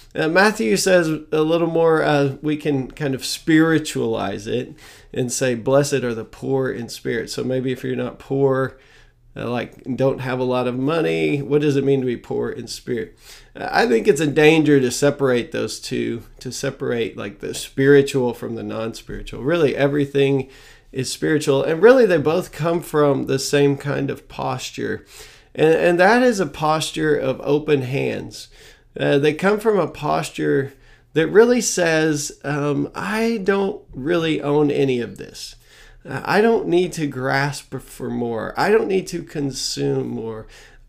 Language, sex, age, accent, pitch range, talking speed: English, male, 40-59, American, 130-155 Hz, 170 wpm